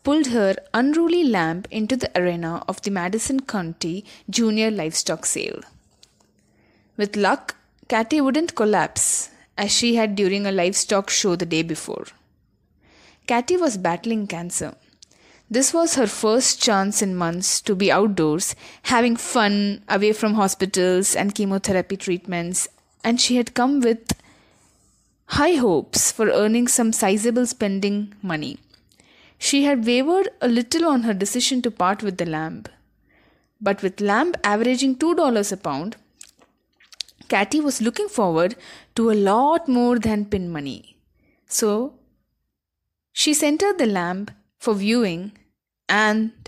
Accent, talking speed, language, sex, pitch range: Indian, 135 wpm, English, female, 195-245 Hz